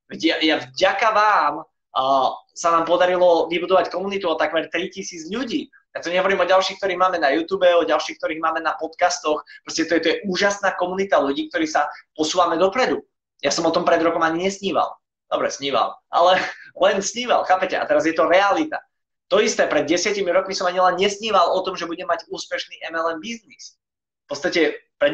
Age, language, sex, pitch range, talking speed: 20-39, Slovak, male, 160-195 Hz, 185 wpm